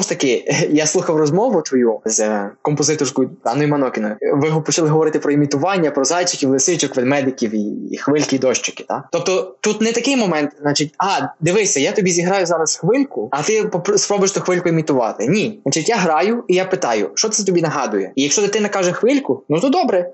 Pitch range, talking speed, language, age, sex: 145-190 Hz, 180 wpm, Ukrainian, 20-39, male